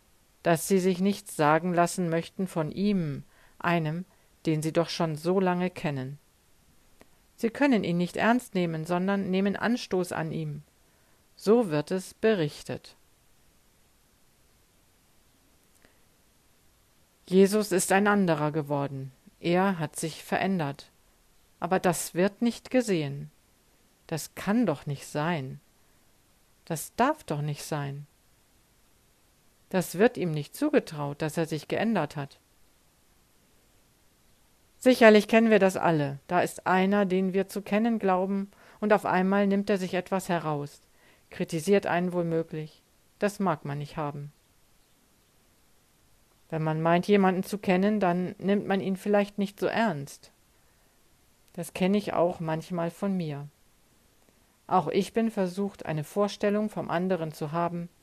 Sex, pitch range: female, 155-200 Hz